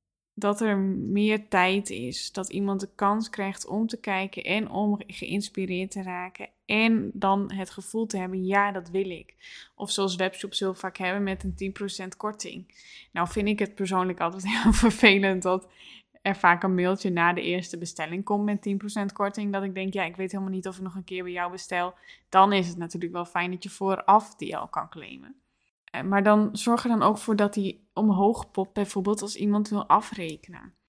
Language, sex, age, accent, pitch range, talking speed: Dutch, female, 10-29, Dutch, 190-215 Hz, 205 wpm